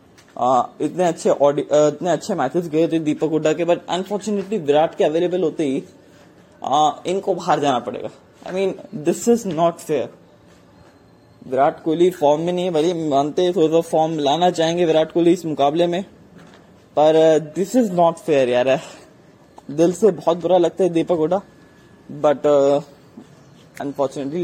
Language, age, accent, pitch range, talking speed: English, 20-39, Indian, 150-180 Hz, 65 wpm